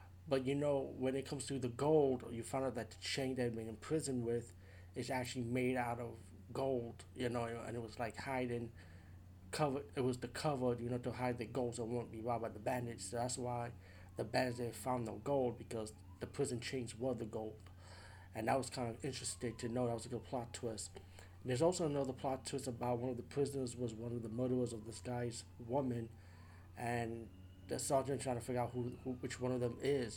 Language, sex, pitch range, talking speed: English, male, 110-130 Hz, 225 wpm